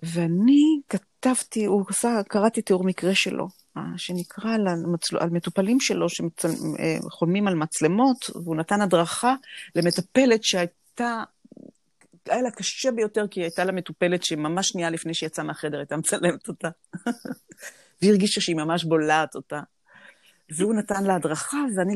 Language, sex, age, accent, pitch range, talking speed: Hebrew, female, 40-59, native, 165-205 Hz, 135 wpm